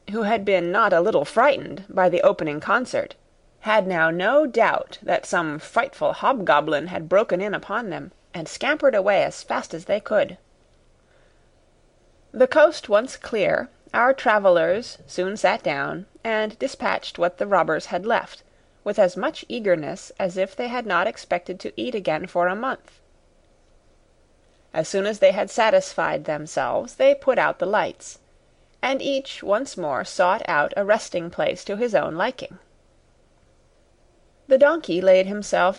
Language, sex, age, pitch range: Korean, female, 30-49, 185-270 Hz